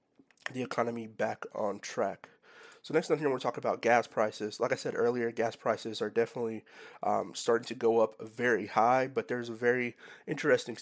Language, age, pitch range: English, 30-49, 110-130 Hz